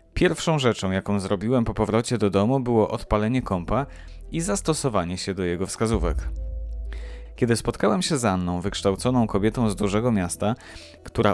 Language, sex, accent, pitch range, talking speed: Polish, male, native, 95-120 Hz, 150 wpm